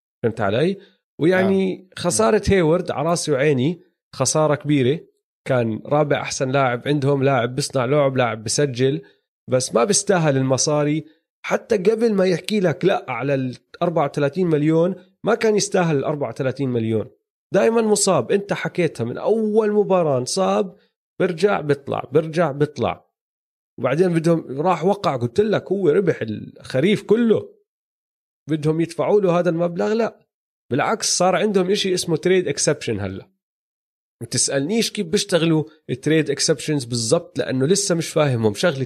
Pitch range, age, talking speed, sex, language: 135-185 Hz, 30-49, 130 wpm, male, Arabic